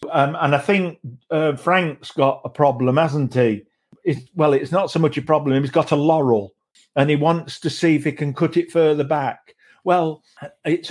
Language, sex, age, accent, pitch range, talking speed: English, male, 50-69, British, 140-175 Hz, 200 wpm